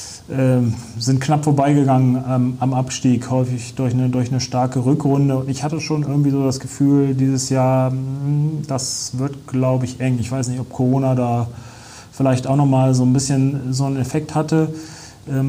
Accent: German